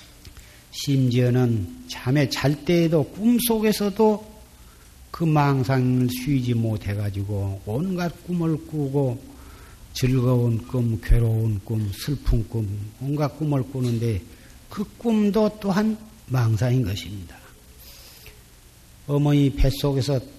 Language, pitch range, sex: Korean, 100-160 Hz, male